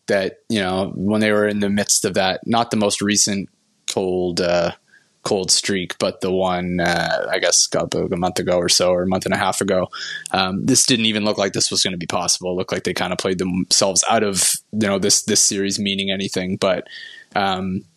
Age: 20-39